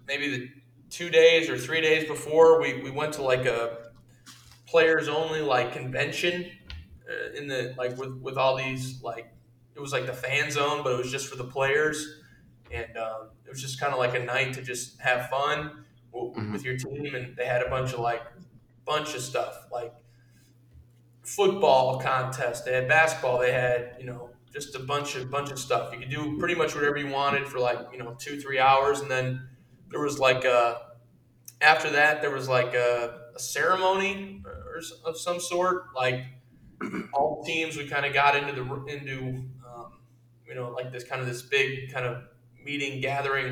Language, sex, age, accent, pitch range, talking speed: English, male, 20-39, American, 125-145 Hz, 195 wpm